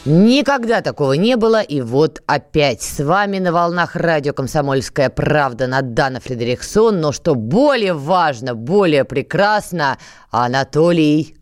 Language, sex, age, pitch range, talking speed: Russian, female, 20-39, 150-230 Hz, 120 wpm